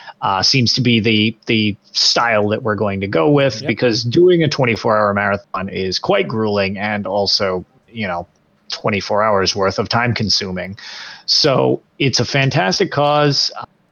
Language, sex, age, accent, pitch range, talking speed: English, male, 30-49, American, 100-135 Hz, 160 wpm